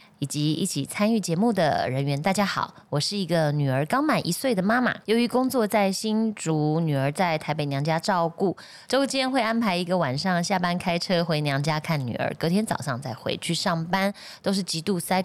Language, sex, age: Chinese, female, 20-39